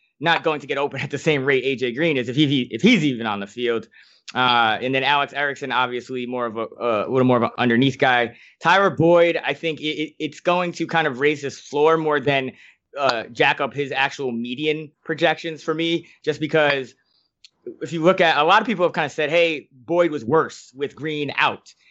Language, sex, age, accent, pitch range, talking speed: English, male, 20-39, American, 130-160 Hz, 225 wpm